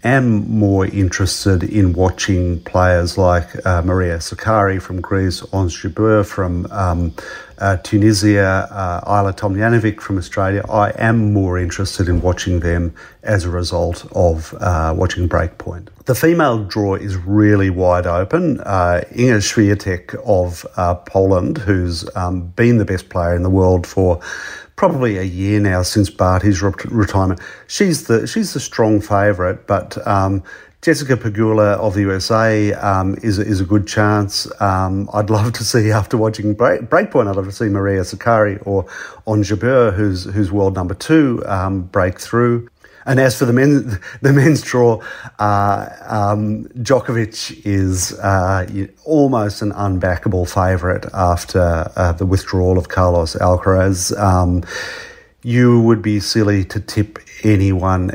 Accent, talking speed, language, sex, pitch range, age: Australian, 150 wpm, English, male, 90-110 Hz, 50-69